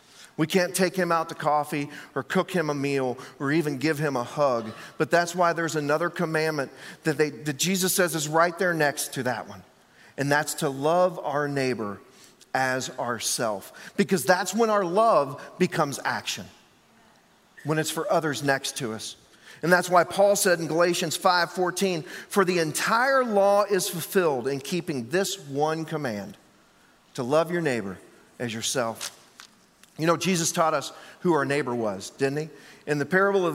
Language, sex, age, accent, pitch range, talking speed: English, male, 40-59, American, 145-185 Hz, 175 wpm